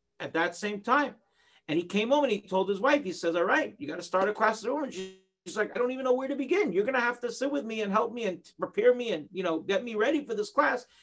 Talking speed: 310 wpm